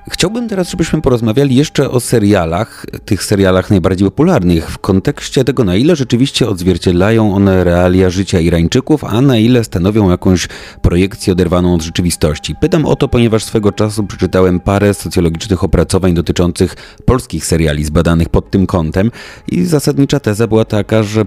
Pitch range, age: 85-110 Hz, 30-49